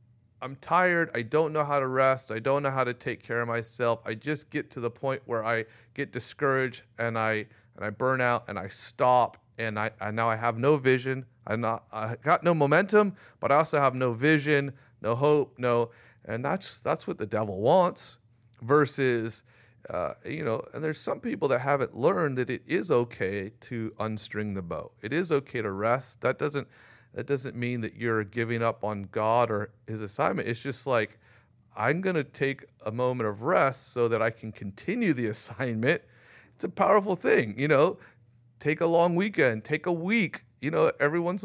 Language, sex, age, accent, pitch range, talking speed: English, male, 30-49, American, 115-150 Hz, 200 wpm